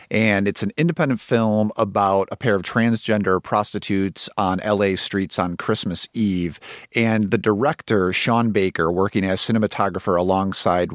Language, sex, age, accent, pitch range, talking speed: English, male, 40-59, American, 100-120 Hz, 145 wpm